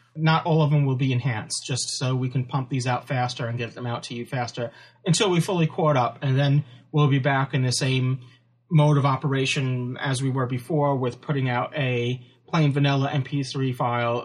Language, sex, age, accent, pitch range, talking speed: English, male, 30-49, American, 130-155 Hz, 210 wpm